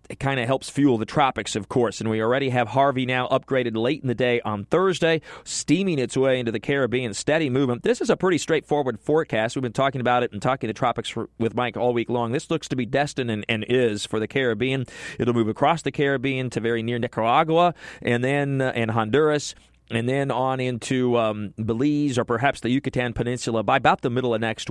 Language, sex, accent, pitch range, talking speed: English, male, American, 120-145 Hz, 225 wpm